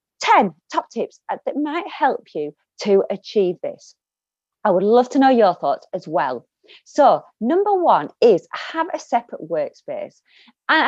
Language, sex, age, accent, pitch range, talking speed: English, female, 30-49, British, 190-315 Hz, 155 wpm